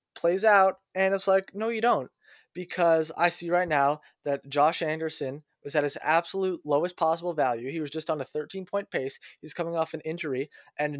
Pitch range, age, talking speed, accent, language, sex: 145-185 Hz, 20-39, 200 wpm, American, English, male